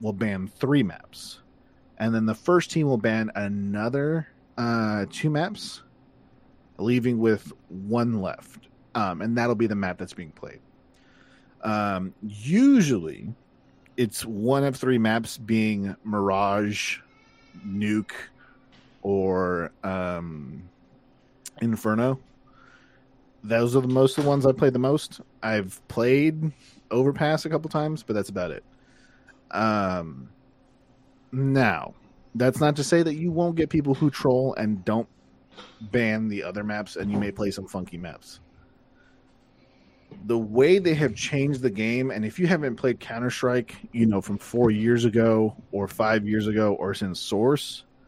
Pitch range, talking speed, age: 105-130 Hz, 140 wpm, 30-49